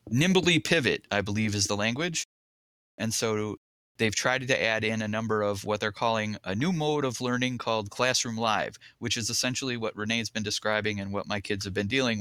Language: English